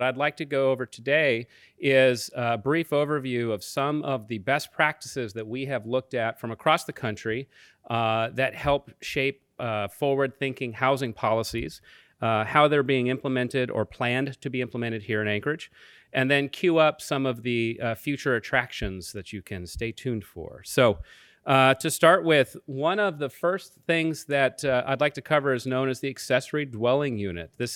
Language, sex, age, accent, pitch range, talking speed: English, male, 40-59, American, 115-140 Hz, 185 wpm